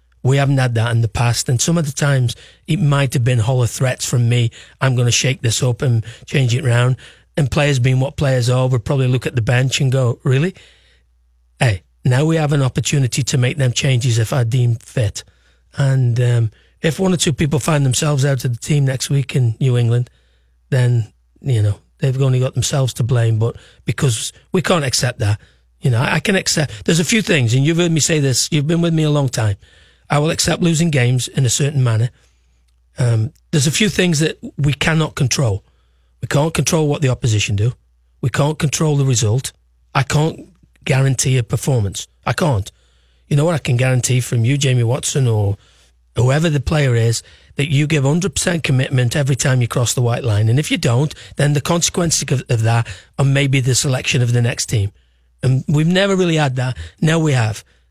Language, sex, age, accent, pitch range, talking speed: English, male, 40-59, British, 115-145 Hz, 215 wpm